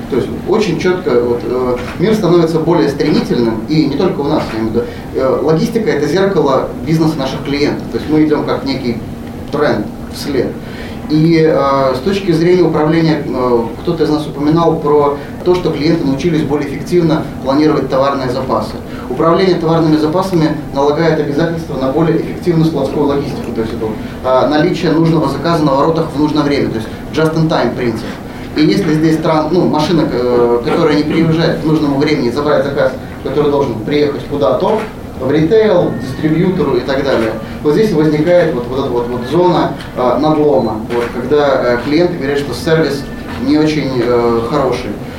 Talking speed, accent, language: 160 wpm, native, Russian